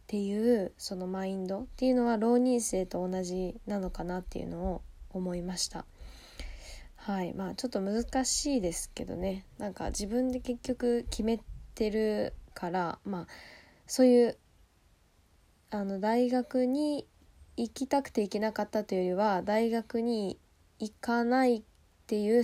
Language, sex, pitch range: Japanese, female, 185-235 Hz